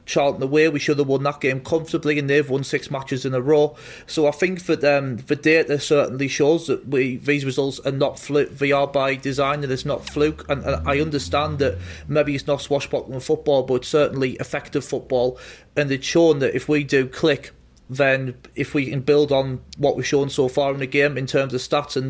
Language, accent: English, British